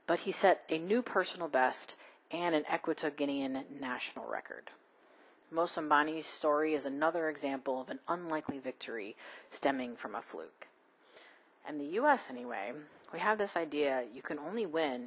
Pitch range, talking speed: 140-175 Hz, 145 wpm